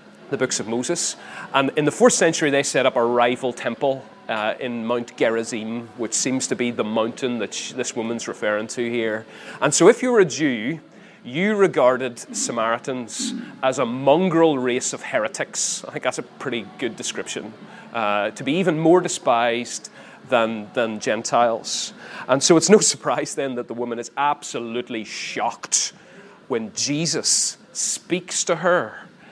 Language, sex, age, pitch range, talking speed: English, male, 30-49, 120-155 Hz, 165 wpm